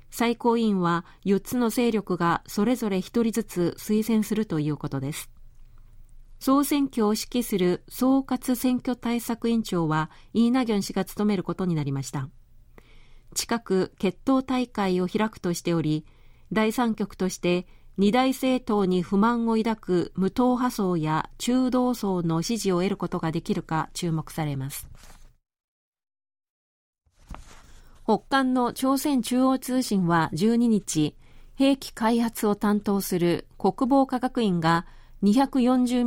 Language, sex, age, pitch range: Japanese, female, 40-59, 175-240 Hz